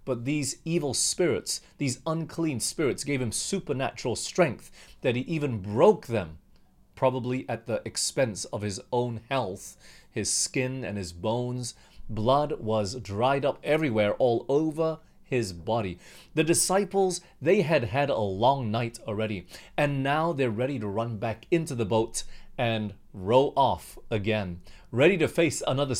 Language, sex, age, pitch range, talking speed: English, male, 30-49, 105-140 Hz, 150 wpm